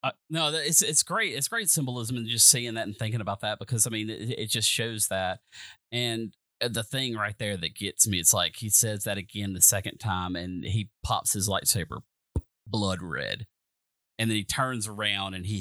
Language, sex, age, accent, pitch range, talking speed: English, male, 30-49, American, 95-120 Hz, 210 wpm